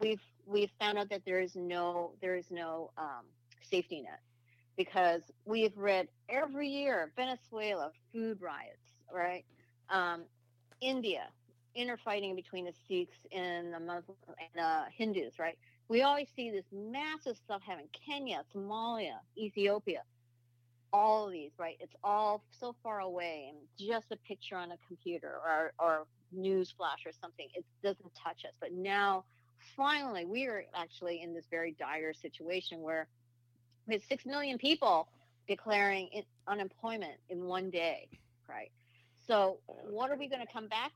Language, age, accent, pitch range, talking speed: English, 50-69, American, 155-215 Hz, 150 wpm